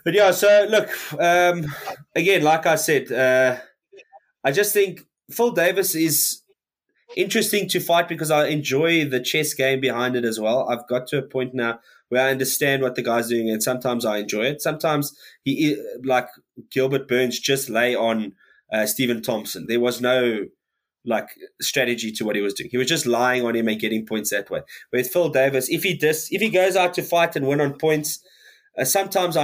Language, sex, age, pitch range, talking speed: English, male, 20-39, 130-180 Hz, 200 wpm